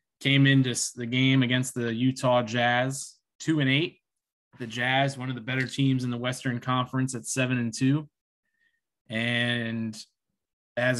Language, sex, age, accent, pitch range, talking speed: English, male, 20-39, American, 115-135 Hz, 155 wpm